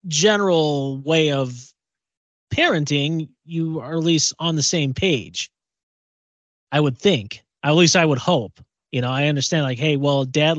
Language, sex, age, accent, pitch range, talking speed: English, male, 30-49, American, 130-170 Hz, 160 wpm